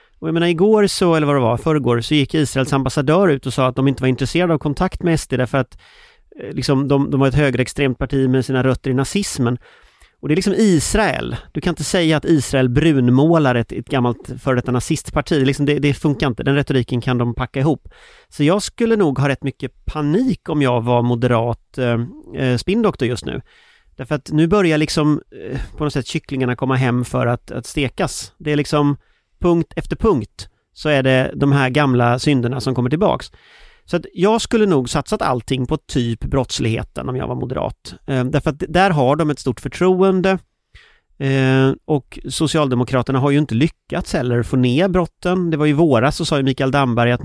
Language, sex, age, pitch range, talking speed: English, male, 30-49, 130-160 Hz, 200 wpm